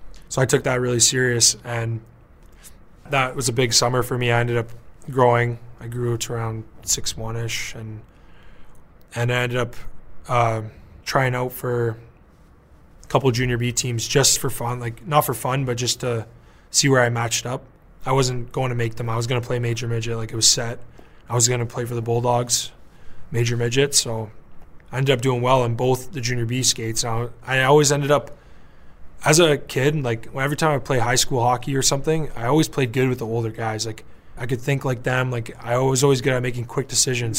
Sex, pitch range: male, 115-130 Hz